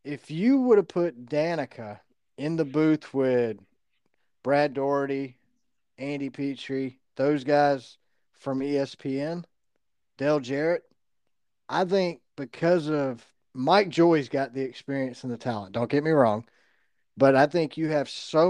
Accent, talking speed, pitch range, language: American, 135 wpm, 125-155 Hz, English